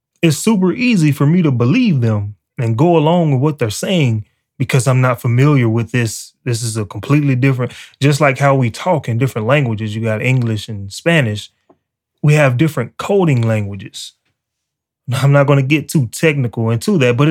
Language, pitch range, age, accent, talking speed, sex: English, 120-160 Hz, 20-39, American, 185 wpm, male